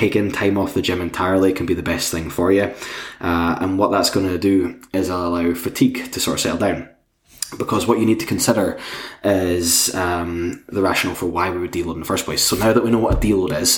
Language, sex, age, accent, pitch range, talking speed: English, male, 20-39, British, 85-105 Hz, 245 wpm